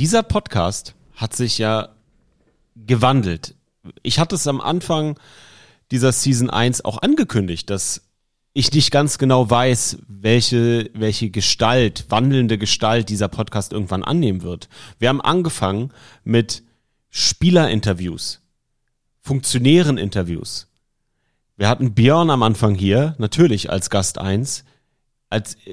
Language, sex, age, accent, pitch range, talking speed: German, male, 30-49, German, 105-135 Hz, 115 wpm